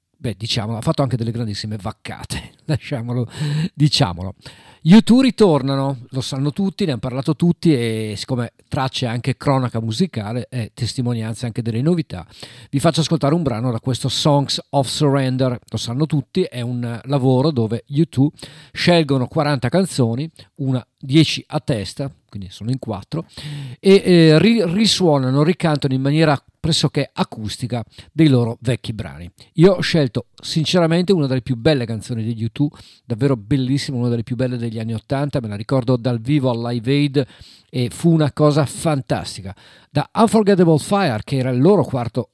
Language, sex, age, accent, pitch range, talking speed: Italian, male, 50-69, native, 115-150 Hz, 160 wpm